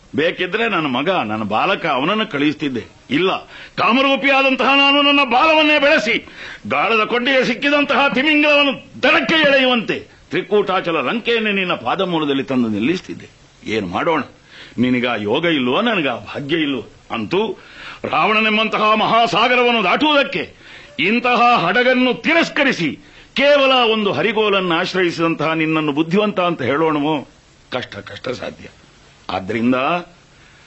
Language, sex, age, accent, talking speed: Kannada, male, 60-79, native, 100 wpm